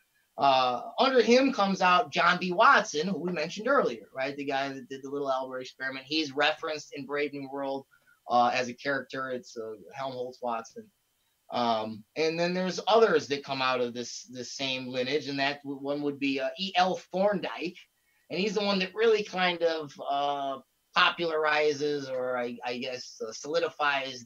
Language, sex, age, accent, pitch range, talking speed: English, male, 30-49, American, 130-185 Hz, 180 wpm